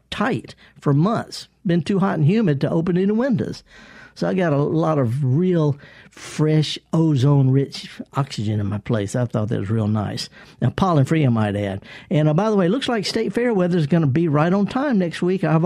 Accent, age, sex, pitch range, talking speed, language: American, 60-79, male, 130-180 Hz, 215 wpm, English